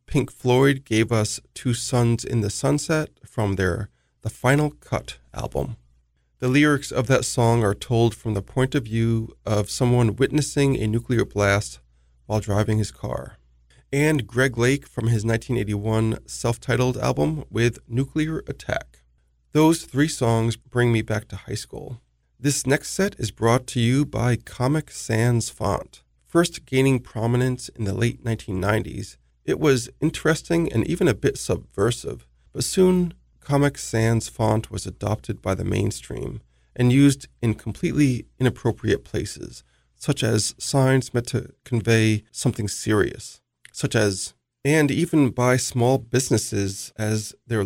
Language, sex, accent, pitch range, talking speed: English, male, American, 110-135 Hz, 145 wpm